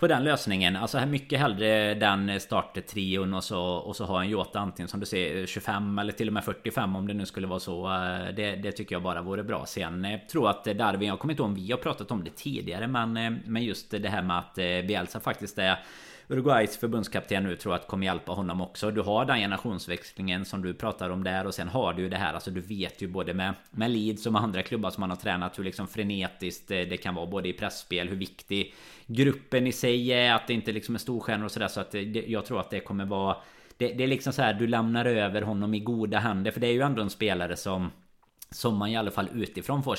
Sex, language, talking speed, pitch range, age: male, Swedish, 250 wpm, 95-115 Hz, 30-49